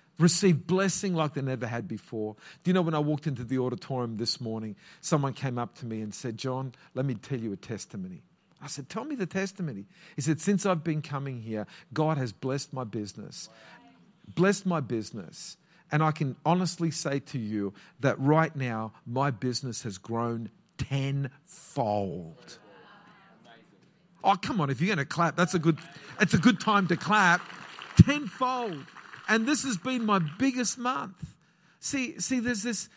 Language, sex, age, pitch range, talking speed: English, male, 50-69, 135-190 Hz, 175 wpm